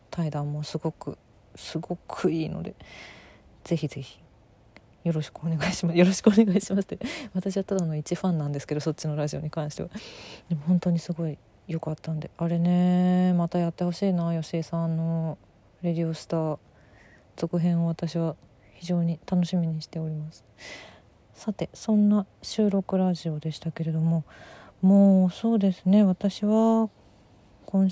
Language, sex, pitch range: Japanese, female, 155-190 Hz